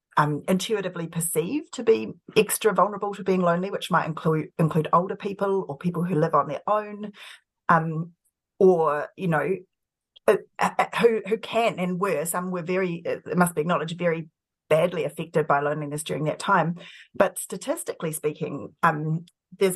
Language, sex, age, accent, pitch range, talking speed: English, female, 30-49, Australian, 155-185 Hz, 165 wpm